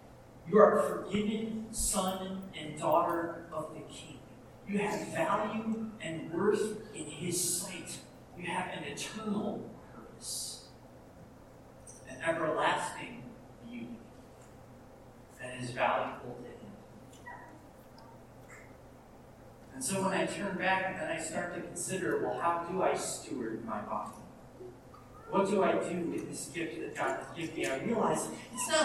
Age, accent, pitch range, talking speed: 40-59, American, 130-205 Hz, 135 wpm